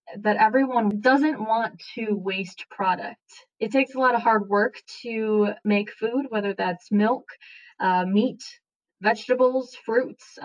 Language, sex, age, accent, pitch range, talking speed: English, female, 10-29, American, 195-225 Hz, 140 wpm